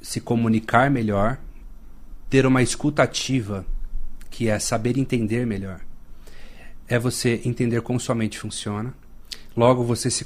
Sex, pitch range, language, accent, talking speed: male, 105-130 Hz, Portuguese, Brazilian, 130 wpm